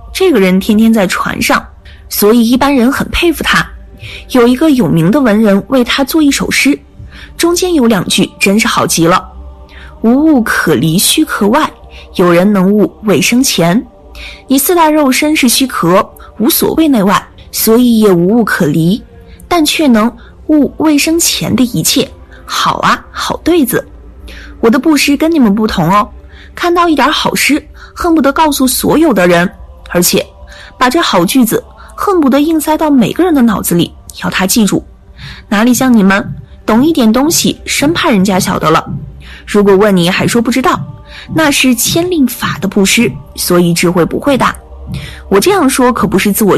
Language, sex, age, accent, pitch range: Chinese, female, 20-39, native, 190-290 Hz